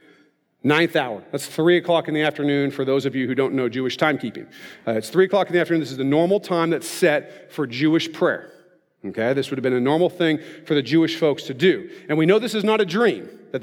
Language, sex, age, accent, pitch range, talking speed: English, male, 40-59, American, 150-195 Hz, 250 wpm